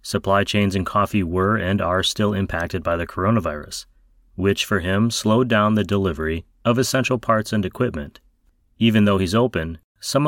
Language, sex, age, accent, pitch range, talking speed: English, male, 30-49, American, 85-115 Hz, 170 wpm